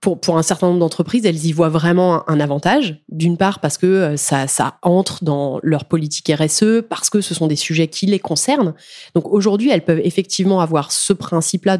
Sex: female